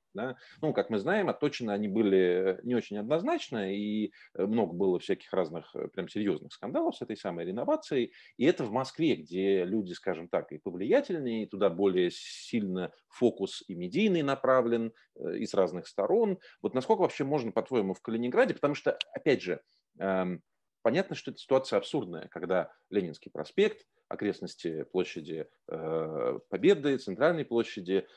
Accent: native